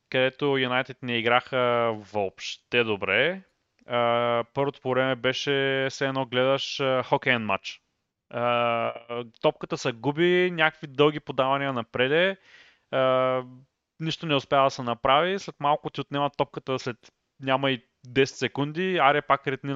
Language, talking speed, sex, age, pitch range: Bulgarian, 125 wpm, male, 20-39, 110-140 Hz